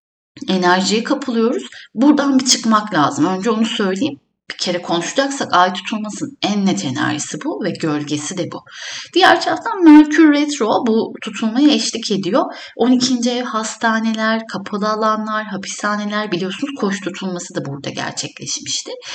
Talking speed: 130 wpm